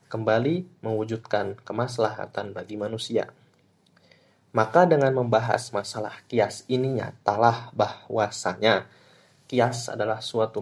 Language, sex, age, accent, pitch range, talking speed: Indonesian, male, 20-39, native, 110-125 Hz, 90 wpm